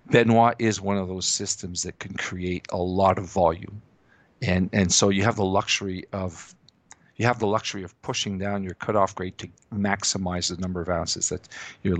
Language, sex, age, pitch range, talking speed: English, male, 50-69, 95-110 Hz, 195 wpm